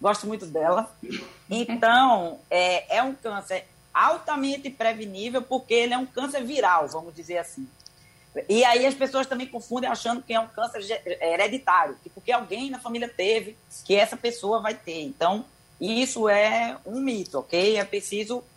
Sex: female